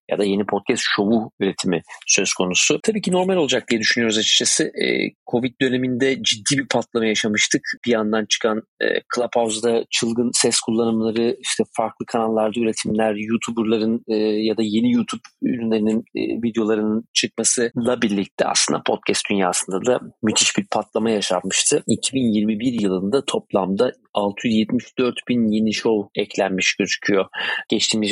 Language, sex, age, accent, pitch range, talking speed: Turkish, male, 40-59, native, 100-115 Hz, 125 wpm